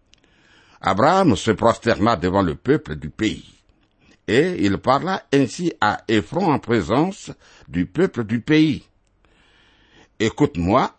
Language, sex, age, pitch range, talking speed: French, male, 60-79, 100-130 Hz, 115 wpm